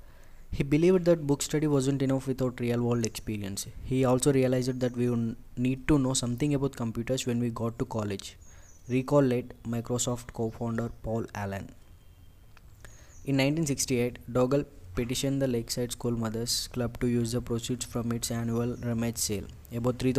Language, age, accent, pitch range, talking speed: Telugu, 20-39, native, 115-130 Hz, 155 wpm